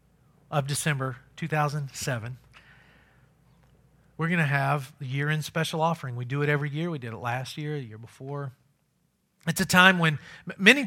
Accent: American